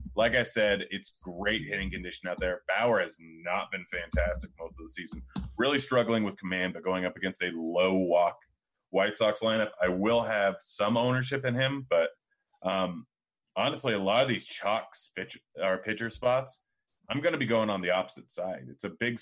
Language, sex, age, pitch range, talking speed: English, male, 30-49, 95-115 Hz, 195 wpm